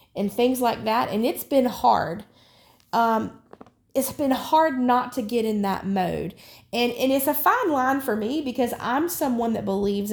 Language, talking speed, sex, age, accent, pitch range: English, 185 wpm, female, 30-49, American, 195-240 Hz